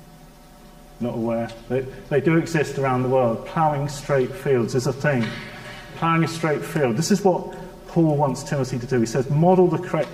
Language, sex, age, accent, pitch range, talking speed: English, male, 40-59, British, 125-155 Hz, 190 wpm